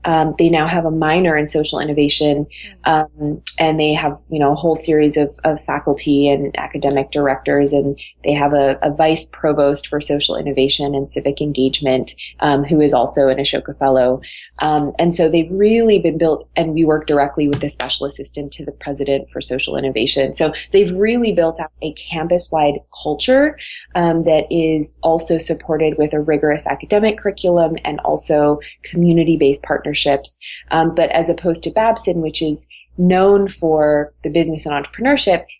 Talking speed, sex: 170 wpm, female